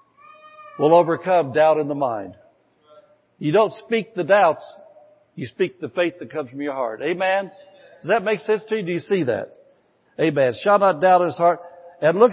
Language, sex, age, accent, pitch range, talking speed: English, male, 60-79, American, 150-200 Hz, 195 wpm